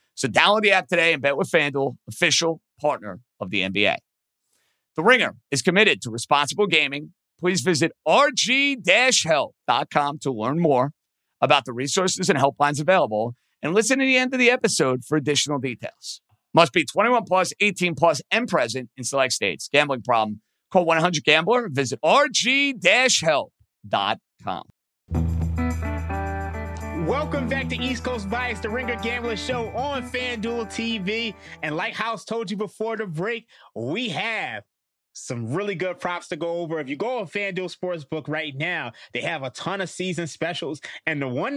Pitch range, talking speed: 140-205 Hz, 160 wpm